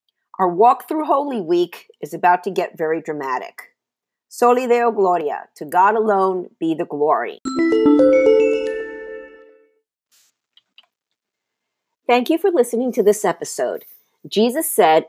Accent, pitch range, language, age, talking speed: American, 165-275 Hz, English, 50-69, 115 wpm